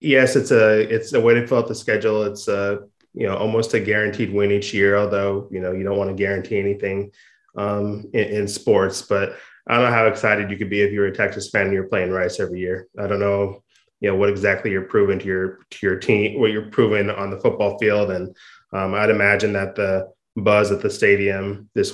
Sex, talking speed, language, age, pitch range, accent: male, 240 wpm, English, 20-39, 95-105 Hz, American